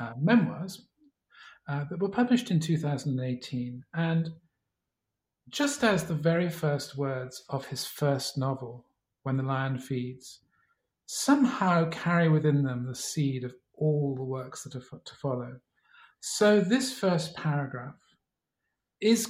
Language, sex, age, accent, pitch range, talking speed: English, male, 50-69, British, 135-170 Hz, 130 wpm